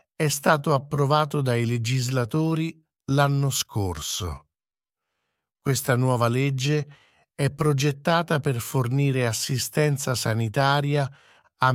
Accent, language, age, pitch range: Italian, English, 50-69, 120-145 Hz